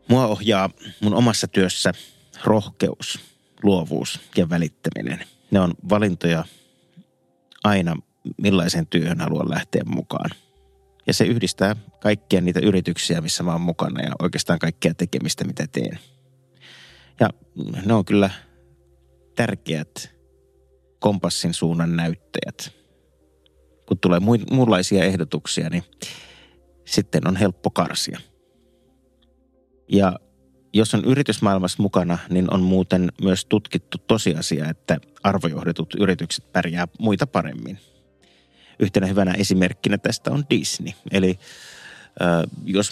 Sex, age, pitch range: male, 30-49, 85-100 Hz